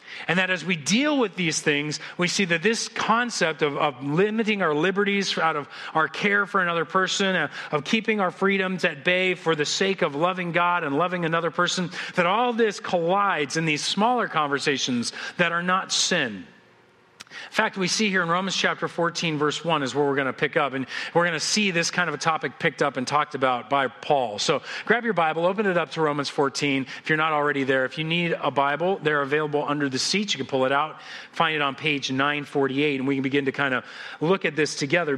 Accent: American